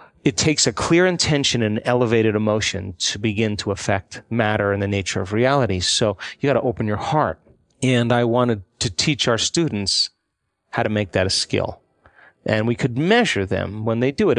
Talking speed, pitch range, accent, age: 195 wpm, 105-125 Hz, American, 40-59